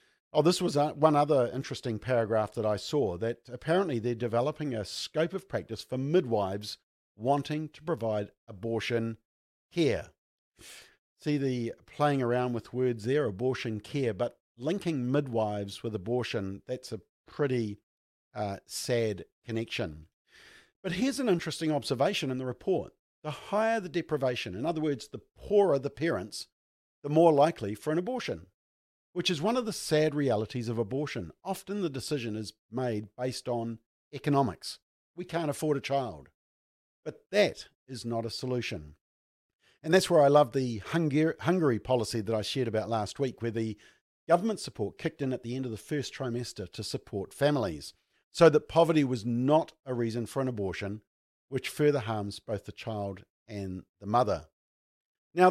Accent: Australian